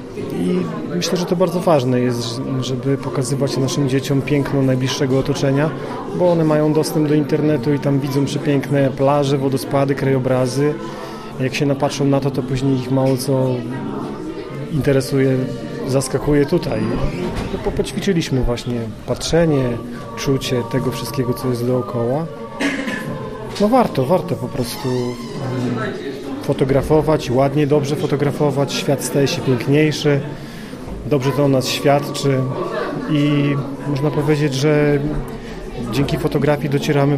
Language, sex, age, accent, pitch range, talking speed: Polish, male, 30-49, native, 130-150 Hz, 120 wpm